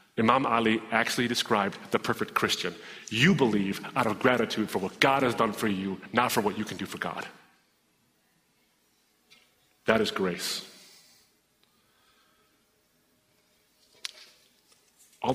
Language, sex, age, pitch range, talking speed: English, male, 30-49, 105-125 Hz, 120 wpm